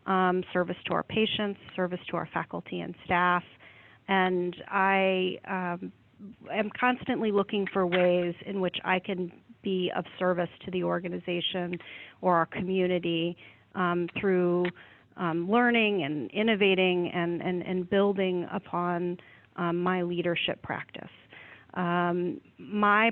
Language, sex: English, female